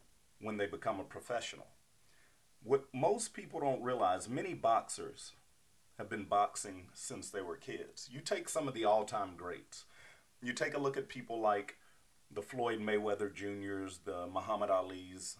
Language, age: English, 40-59